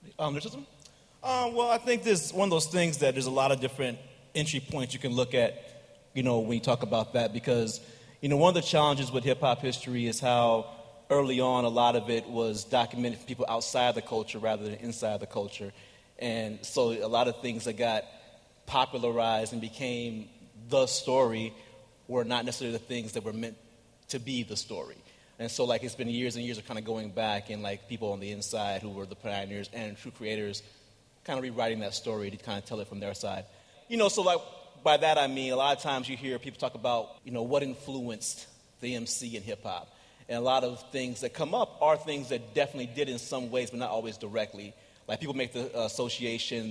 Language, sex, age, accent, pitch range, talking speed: English, male, 30-49, American, 110-130 Hz, 220 wpm